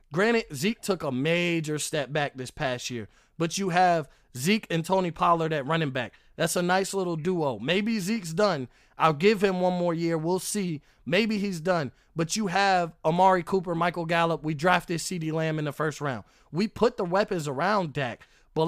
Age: 20-39